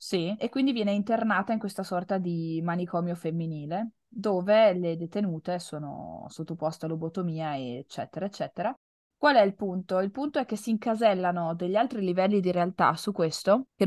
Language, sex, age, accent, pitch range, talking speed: Italian, female, 20-39, native, 170-220 Hz, 165 wpm